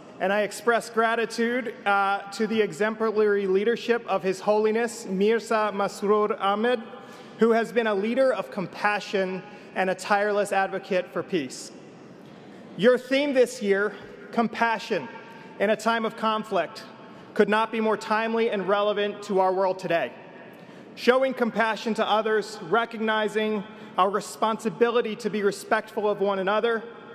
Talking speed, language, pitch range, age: 135 wpm, English, 205-230 Hz, 30-49